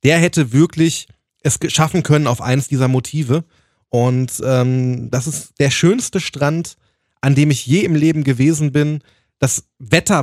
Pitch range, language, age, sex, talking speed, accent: 130-170 Hz, German, 20-39, male, 160 wpm, German